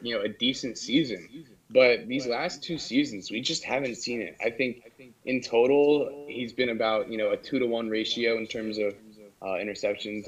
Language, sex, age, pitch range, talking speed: English, male, 20-39, 105-135 Hz, 200 wpm